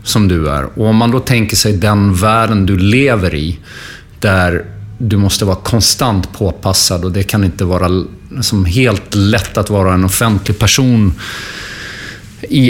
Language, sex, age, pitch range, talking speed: English, male, 30-49, 95-125 Hz, 155 wpm